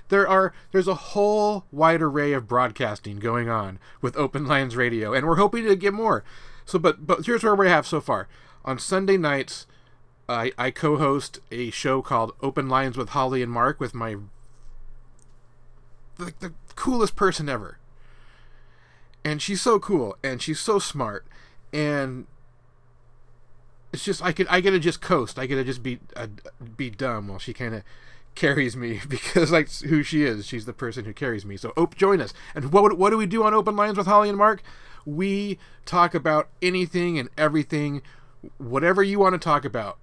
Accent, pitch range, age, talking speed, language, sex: American, 120-175 Hz, 30-49, 185 wpm, English, male